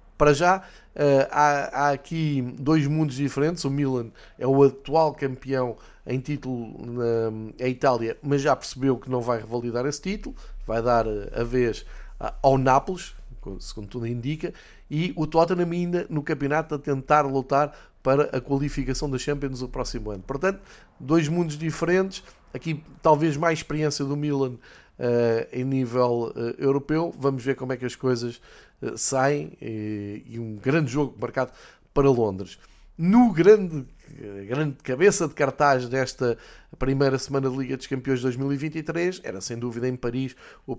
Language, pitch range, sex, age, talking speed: Portuguese, 125-150 Hz, male, 20-39, 150 wpm